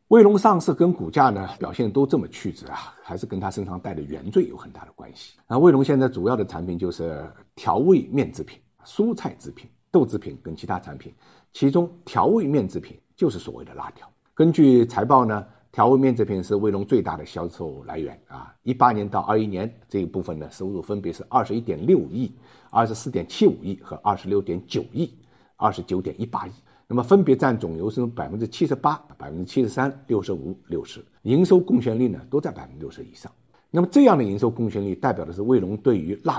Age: 50-69